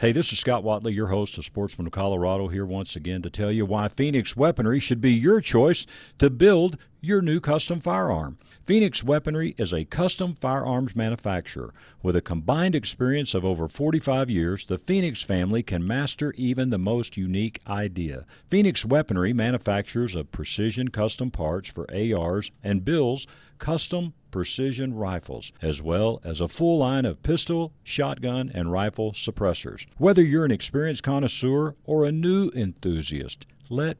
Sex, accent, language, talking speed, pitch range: male, American, English, 160 wpm, 100-145 Hz